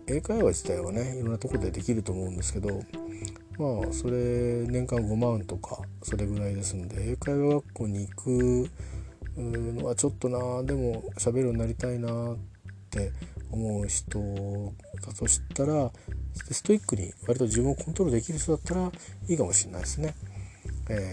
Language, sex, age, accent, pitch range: Japanese, male, 40-59, native, 95-120 Hz